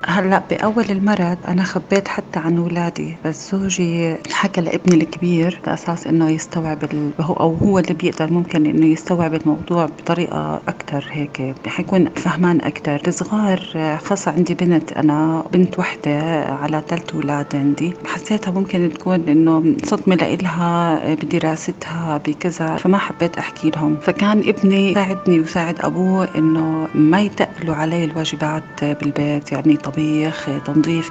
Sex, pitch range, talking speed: female, 155-180 Hz, 125 wpm